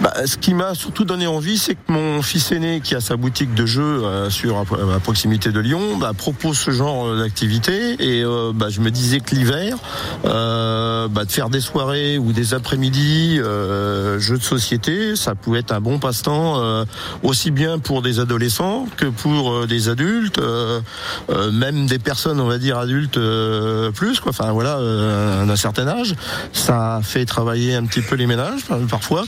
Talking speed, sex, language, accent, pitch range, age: 195 wpm, male, French, French, 110-140 Hz, 50-69